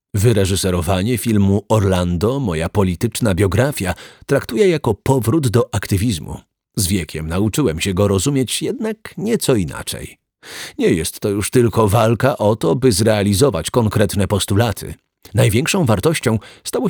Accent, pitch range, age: native, 95-125 Hz, 40-59